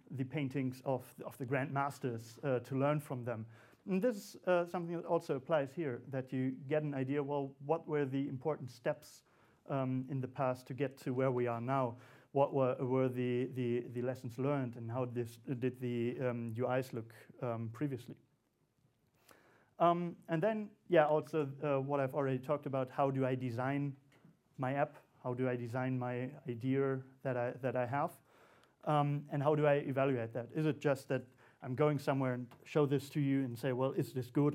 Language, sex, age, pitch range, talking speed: English, male, 40-59, 125-145 Hz, 200 wpm